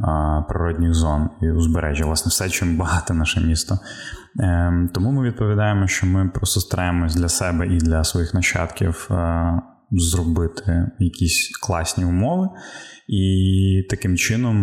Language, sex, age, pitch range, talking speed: Ukrainian, male, 20-39, 85-100 Hz, 125 wpm